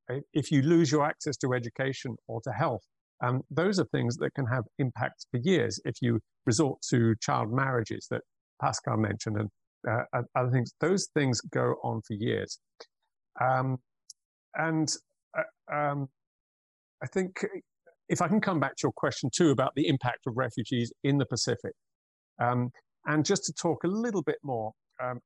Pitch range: 115-155 Hz